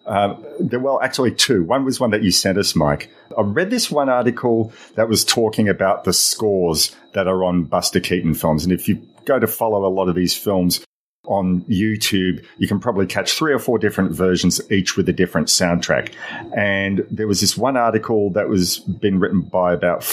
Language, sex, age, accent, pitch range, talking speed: English, male, 40-59, Australian, 90-110 Hz, 205 wpm